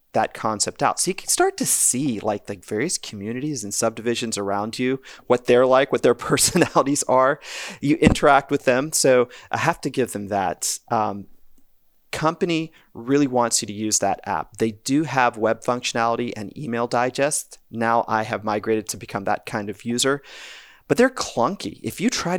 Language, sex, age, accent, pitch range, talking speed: English, male, 30-49, American, 110-140 Hz, 180 wpm